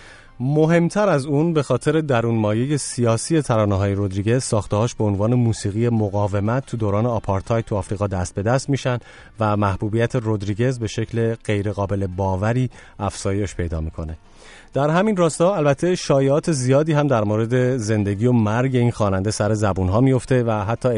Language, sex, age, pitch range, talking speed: English, male, 30-49, 105-135 Hz, 155 wpm